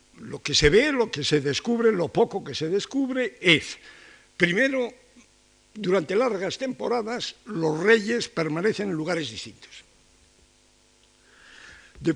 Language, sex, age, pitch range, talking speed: Spanish, male, 60-79, 140-215 Hz, 125 wpm